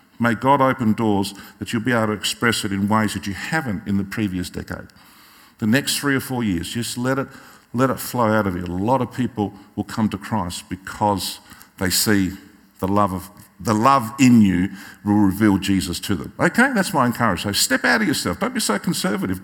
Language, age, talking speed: English, 50-69, 220 wpm